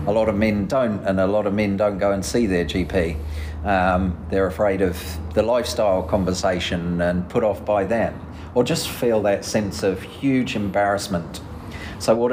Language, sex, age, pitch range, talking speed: English, male, 40-59, 95-115 Hz, 185 wpm